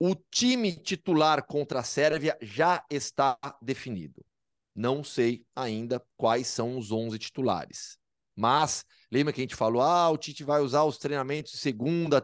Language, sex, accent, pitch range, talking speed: Portuguese, male, Brazilian, 125-150 Hz, 155 wpm